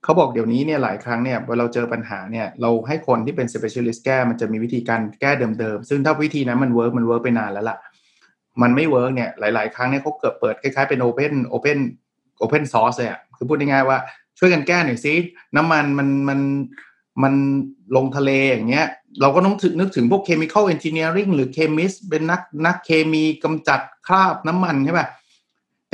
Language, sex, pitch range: Thai, male, 120-150 Hz